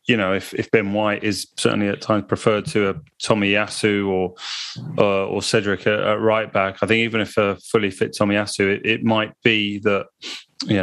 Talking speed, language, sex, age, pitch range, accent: 205 wpm, English, male, 30-49, 100-110 Hz, British